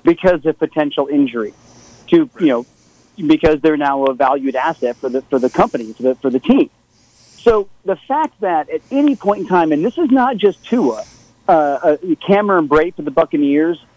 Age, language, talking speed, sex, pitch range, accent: 40-59, English, 190 wpm, male, 145-205 Hz, American